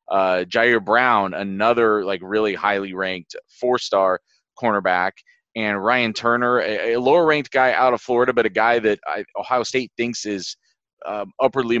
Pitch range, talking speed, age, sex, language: 100-130 Hz, 160 wpm, 30-49, male, English